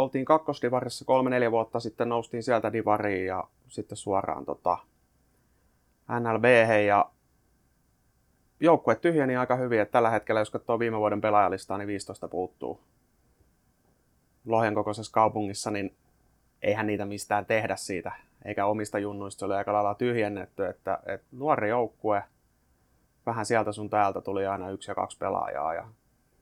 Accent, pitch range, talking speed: native, 100-115 Hz, 135 wpm